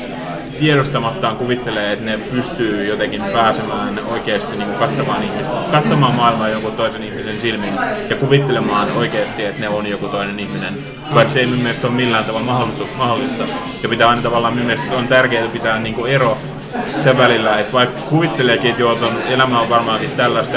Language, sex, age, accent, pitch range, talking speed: Finnish, male, 30-49, native, 110-130 Hz, 160 wpm